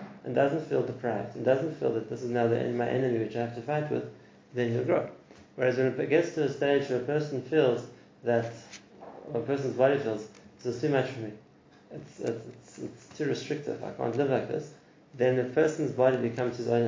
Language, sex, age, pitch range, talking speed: English, male, 30-49, 120-140 Hz, 225 wpm